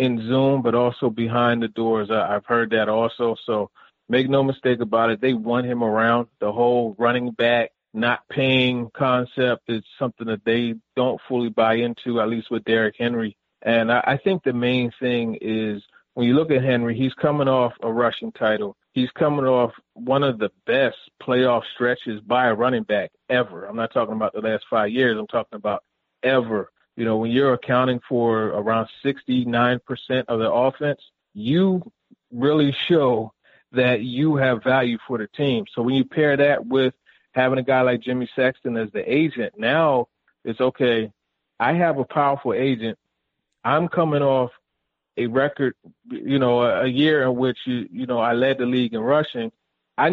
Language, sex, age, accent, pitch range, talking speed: English, male, 30-49, American, 115-130 Hz, 180 wpm